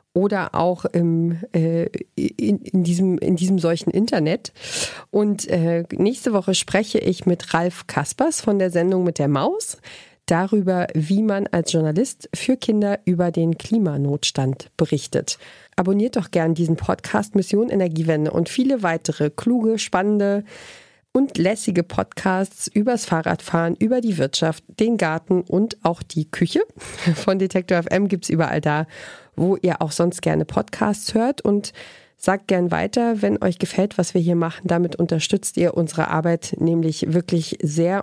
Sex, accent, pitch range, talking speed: female, German, 165-205 Hz, 145 wpm